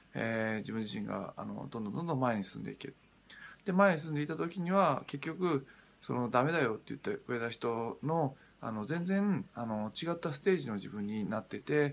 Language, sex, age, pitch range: Japanese, male, 20-39, 110-155 Hz